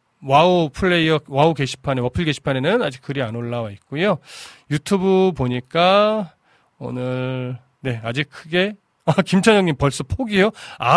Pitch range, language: 130-195 Hz, Korean